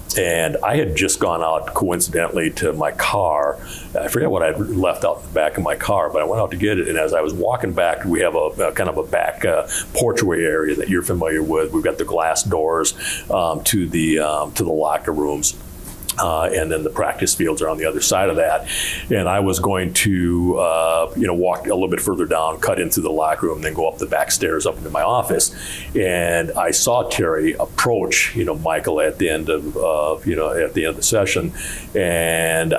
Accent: American